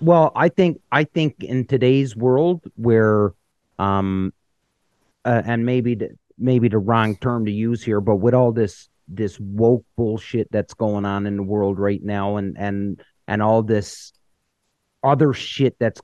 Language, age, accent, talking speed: English, 40-59, American, 165 wpm